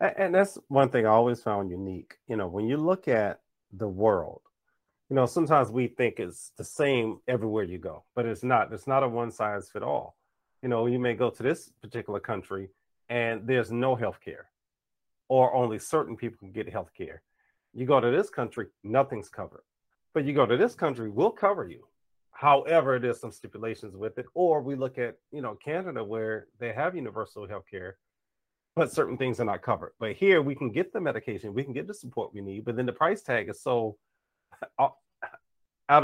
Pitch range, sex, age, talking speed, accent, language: 110-140 Hz, male, 40-59, 205 wpm, American, English